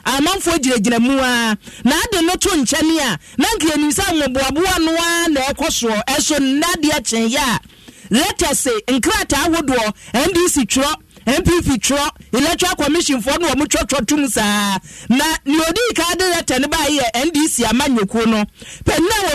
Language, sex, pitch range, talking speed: English, male, 255-330 Hz, 145 wpm